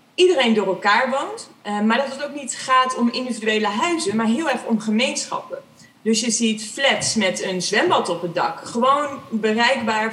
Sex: female